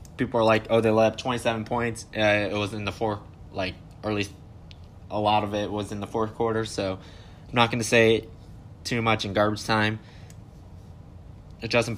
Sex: male